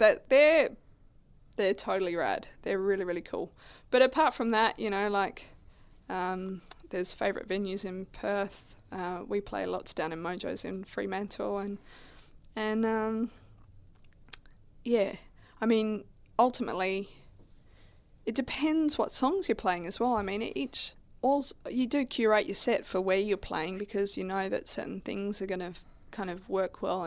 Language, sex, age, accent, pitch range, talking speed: English, female, 20-39, Australian, 185-220 Hz, 160 wpm